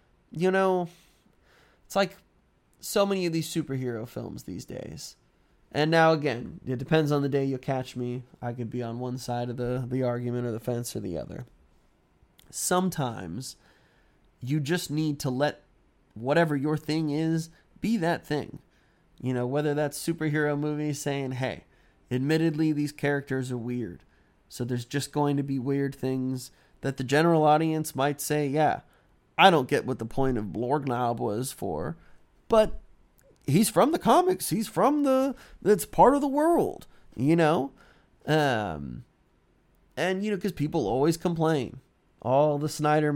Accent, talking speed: American, 160 wpm